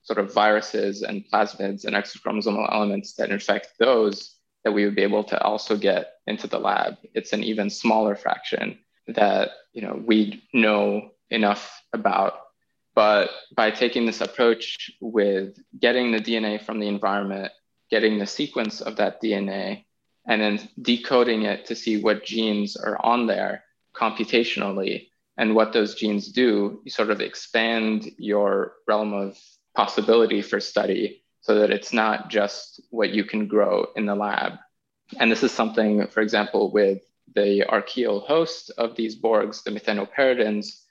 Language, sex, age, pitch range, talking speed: English, male, 20-39, 105-115 Hz, 155 wpm